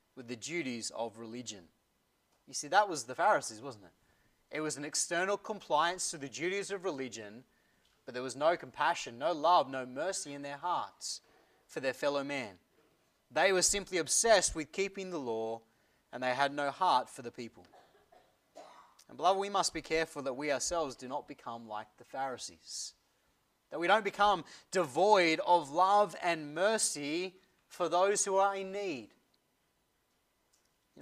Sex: male